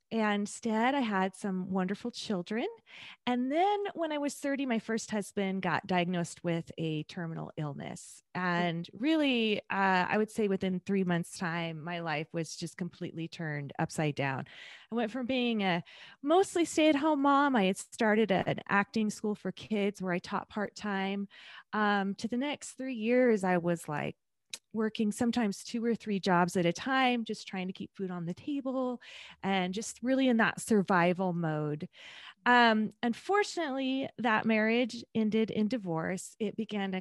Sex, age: female, 20-39